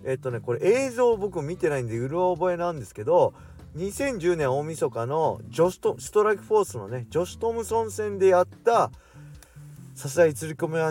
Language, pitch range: Japanese, 105-170 Hz